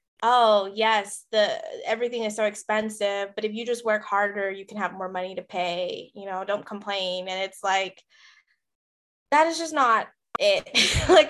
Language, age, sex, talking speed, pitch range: English, 20-39, female, 175 wpm, 200-235 Hz